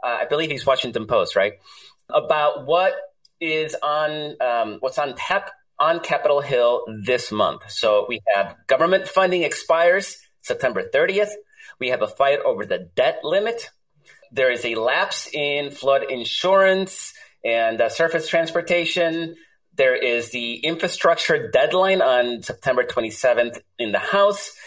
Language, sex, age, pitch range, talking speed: English, male, 30-49, 125-185 Hz, 140 wpm